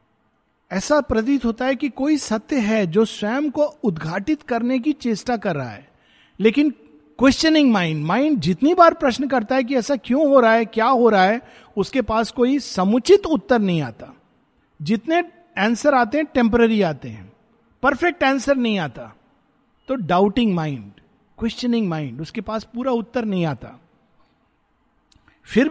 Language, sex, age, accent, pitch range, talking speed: Hindi, male, 50-69, native, 195-255 Hz, 155 wpm